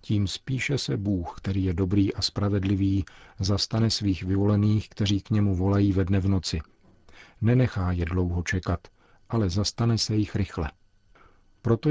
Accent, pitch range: native, 95-110 Hz